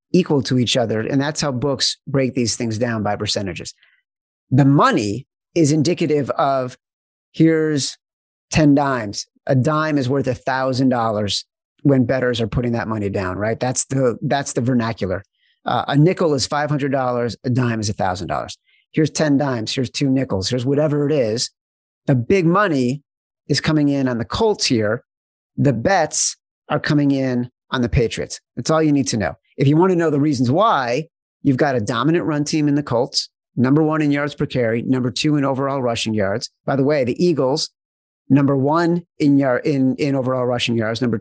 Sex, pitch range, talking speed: male, 120-150 Hz, 185 wpm